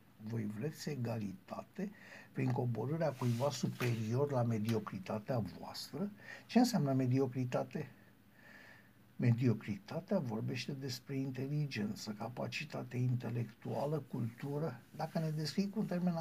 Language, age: Romanian, 60-79